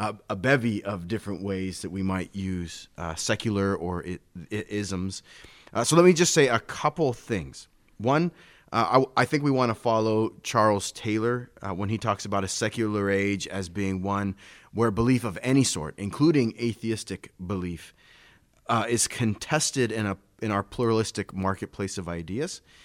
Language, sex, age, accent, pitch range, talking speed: English, male, 30-49, American, 95-120 Hz, 170 wpm